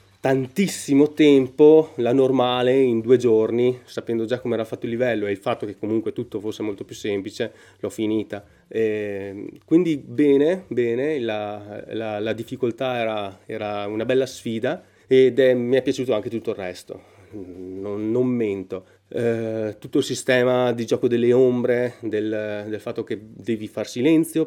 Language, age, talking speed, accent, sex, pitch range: Italian, 30-49, 160 wpm, native, male, 110-130 Hz